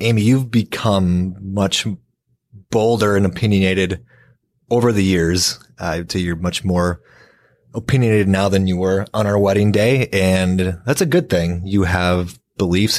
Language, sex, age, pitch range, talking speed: English, male, 30-49, 85-105 Hz, 155 wpm